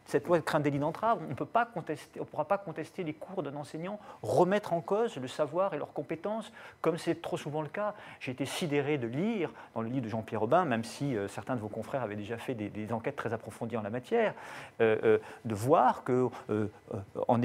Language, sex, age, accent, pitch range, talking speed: French, male, 40-59, French, 125-175 Hz, 225 wpm